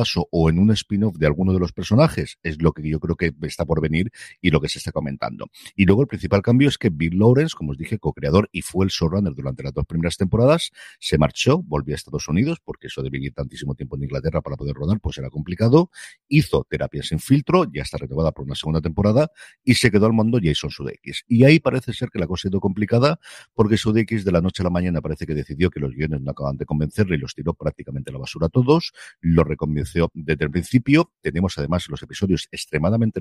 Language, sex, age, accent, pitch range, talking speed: Spanish, male, 50-69, Spanish, 75-110 Hz, 235 wpm